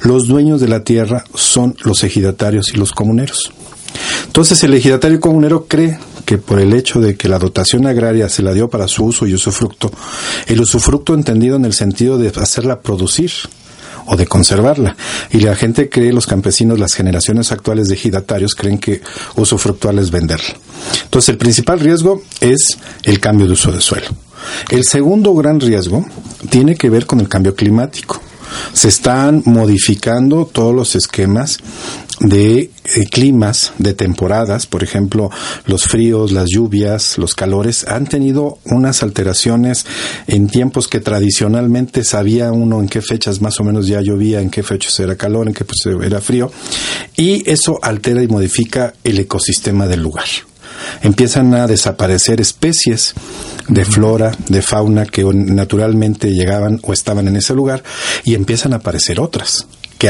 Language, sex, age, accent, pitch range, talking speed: Spanish, male, 50-69, Mexican, 100-125 Hz, 160 wpm